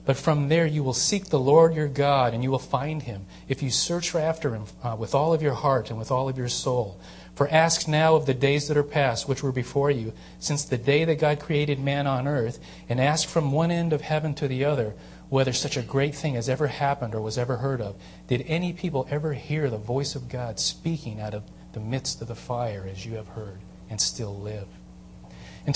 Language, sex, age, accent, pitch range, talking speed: English, male, 40-59, American, 110-145 Hz, 240 wpm